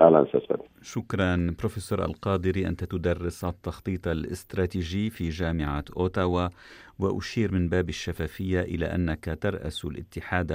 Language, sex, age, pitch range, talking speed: Arabic, male, 50-69, 85-105 Hz, 100 wpm